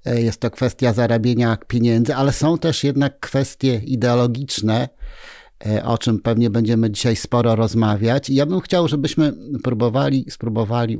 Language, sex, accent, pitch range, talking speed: Polish, male, native, 115-130 Hz, 135 wpm